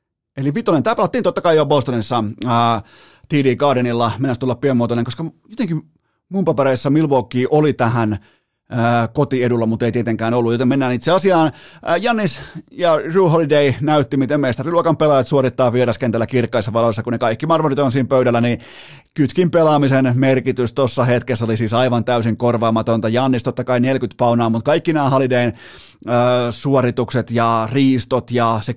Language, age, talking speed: Finnish, 30-49, 155 wpm